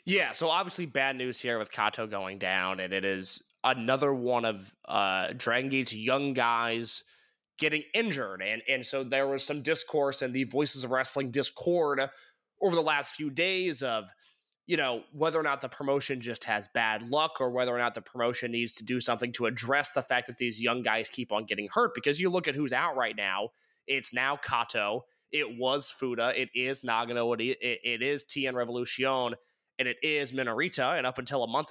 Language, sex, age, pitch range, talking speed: English, male, 20-39, 120-145 Hz, 200 wpm